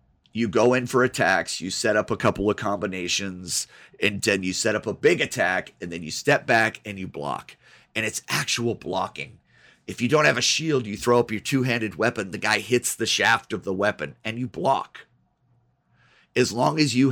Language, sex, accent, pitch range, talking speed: English, male, American, 105-130 Hz, 205 wpm